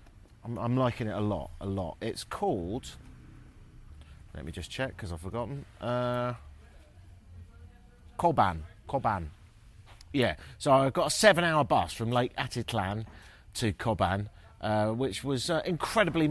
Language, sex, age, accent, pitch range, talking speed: English, male, 30-49, British, 90-135 Hz, 135 wpm